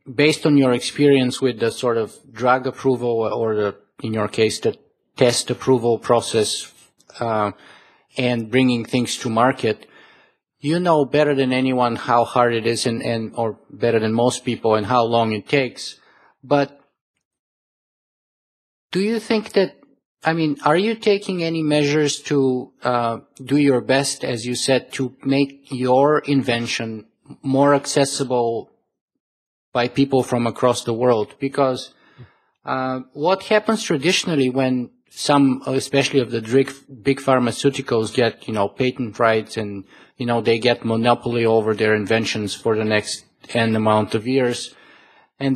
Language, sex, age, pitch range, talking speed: English, male, 50-69, 115-140 Hz, 150 wpm